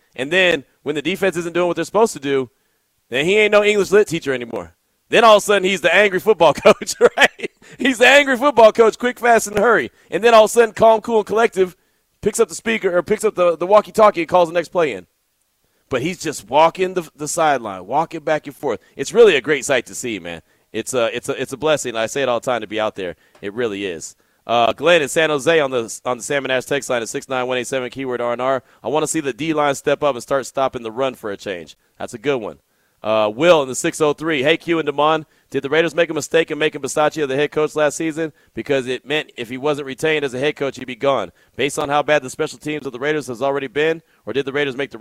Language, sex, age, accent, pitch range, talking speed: English, male, 30-49, American, 135-180 Hz, 270 wpm